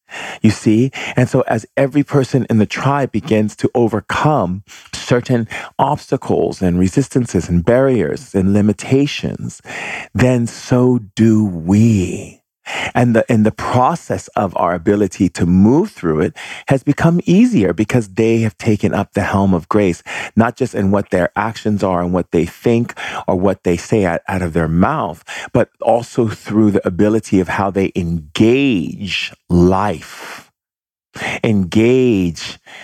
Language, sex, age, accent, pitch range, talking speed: English, male, 40-59, American, 95-125 Hz, 145 wpm